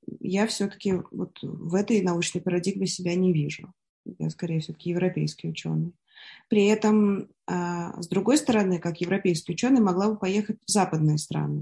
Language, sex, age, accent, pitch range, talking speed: Russian, female, 20-39, native, 175-215 Hz, 155 wpm